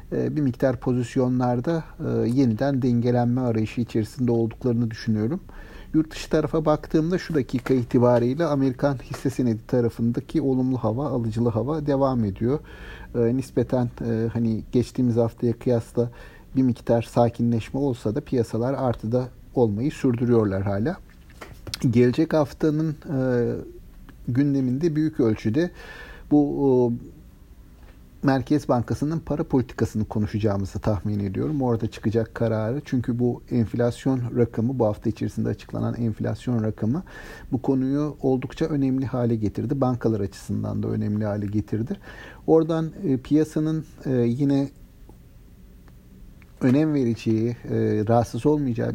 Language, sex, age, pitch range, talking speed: Turkish, male, 60-79, 115-135 Hz, 110 wpm